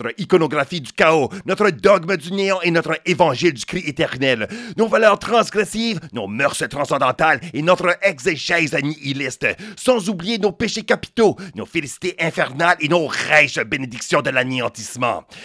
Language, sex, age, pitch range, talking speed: English, male, 40-59, 155-205 Hz, 145 wpm